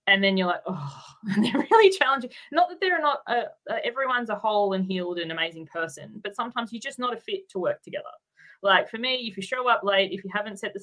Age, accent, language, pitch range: 20-39, Australian, English, 190-245 Hz